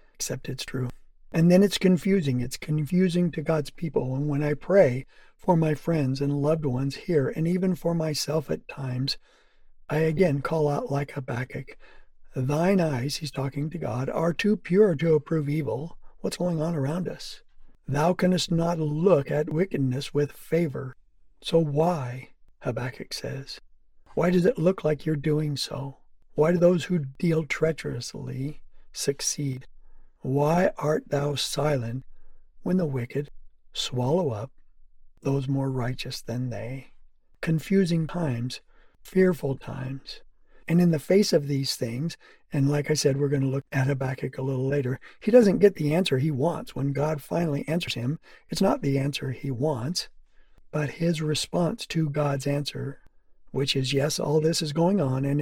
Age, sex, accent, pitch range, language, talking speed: 60-79, male, American, 135-165 Hz, English, 160 wpm